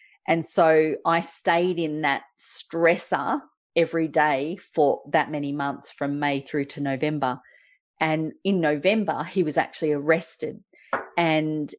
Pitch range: 150-195 Hz